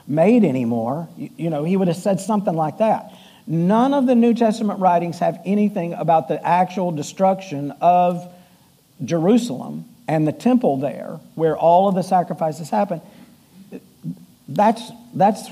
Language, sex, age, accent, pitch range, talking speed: English, male, 50-69, American, 160-205 Hz, 145 wpm